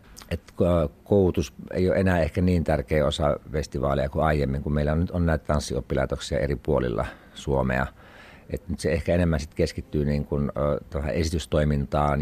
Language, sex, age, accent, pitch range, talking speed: Finnish, male, 60-79, native, 70-85 Hz, 155 wpm